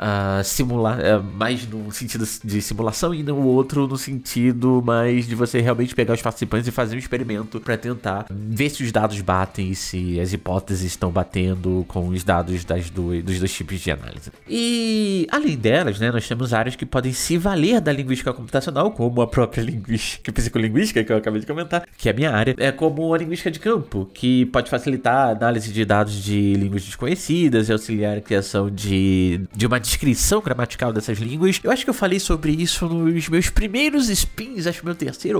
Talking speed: 195 wpm